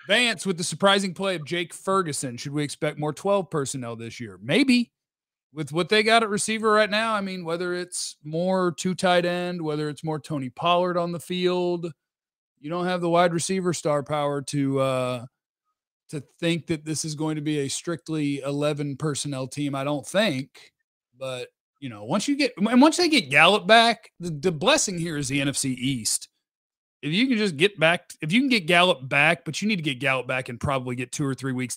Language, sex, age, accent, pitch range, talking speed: English, male, 40-59, American, 135-185 Hz, 215 wpm